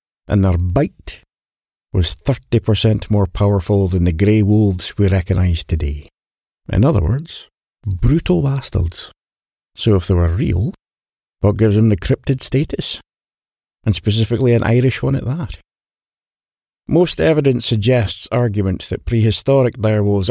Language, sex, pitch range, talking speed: English, male, 95-125 Hz, 130 wpm